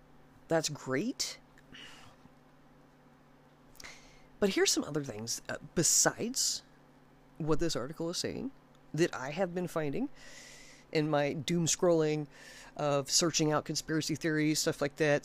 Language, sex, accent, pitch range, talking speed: English, female, American, 130-205 Hz, 120 wpm